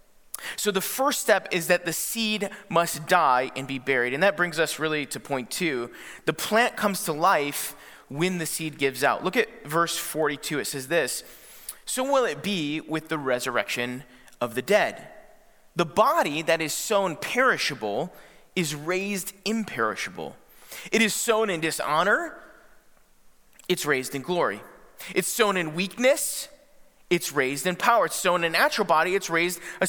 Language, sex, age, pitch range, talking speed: English, male, 30-49, 155-210 Hz, 165 wpm